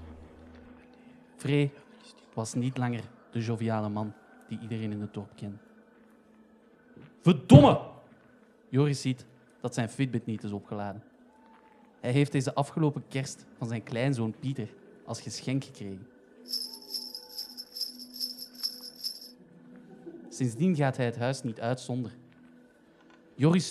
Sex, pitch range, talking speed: male, 110-140 Hz, 110 wpm